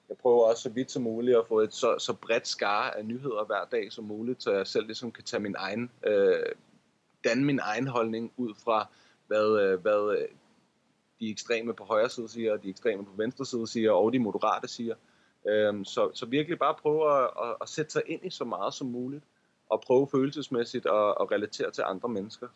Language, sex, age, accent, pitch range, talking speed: Danish, male, 30-49, native, 110-150 Hz, 215 wpm